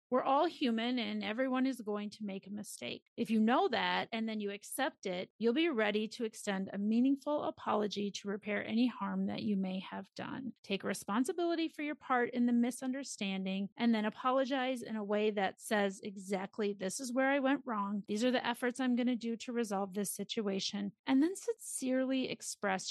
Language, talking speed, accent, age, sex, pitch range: English, 200 wpm, American, 30-49, female, 210-270 Hz